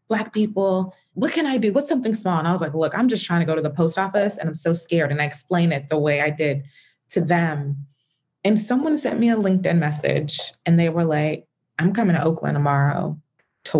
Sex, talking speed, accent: female, 235 wpm, American